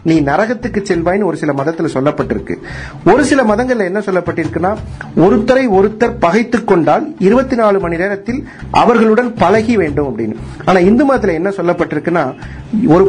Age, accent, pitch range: 50-69, native, 160-220 Hz